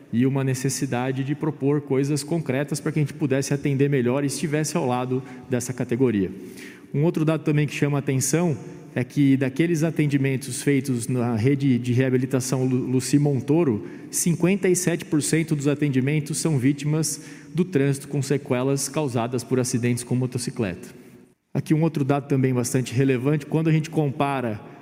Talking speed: 155 wpm